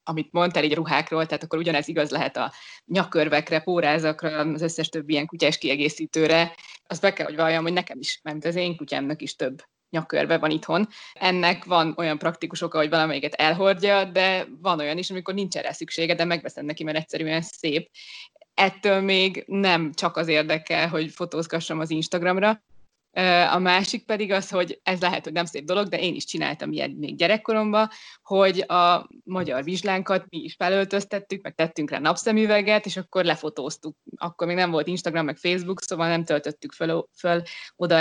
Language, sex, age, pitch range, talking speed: Hungarian, female, 20-39, 160-190 Hz, 175 wpm